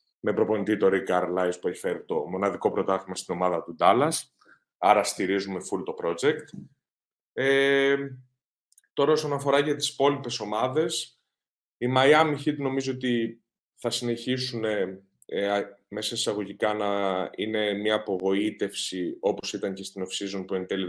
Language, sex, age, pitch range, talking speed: Greek, male, 30-49, 100-125 Hz, 135 wpm